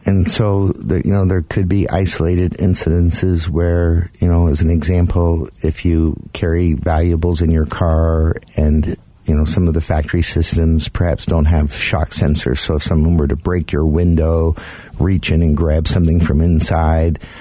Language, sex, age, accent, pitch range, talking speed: English, male, 50-69, American, 80-90 Hz, 170 wpm